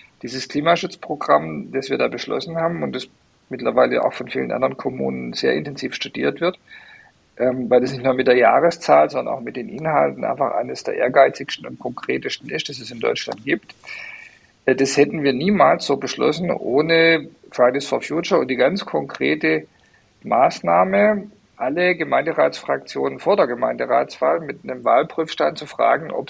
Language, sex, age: English, male, 50-69